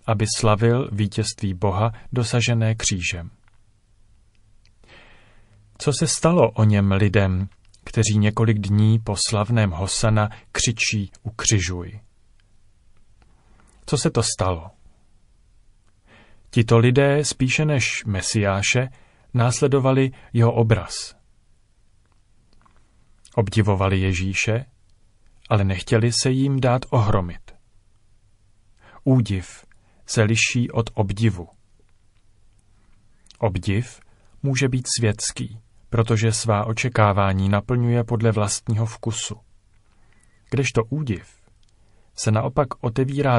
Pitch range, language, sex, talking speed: 100-115 Hz, Czech, male, 85 wpm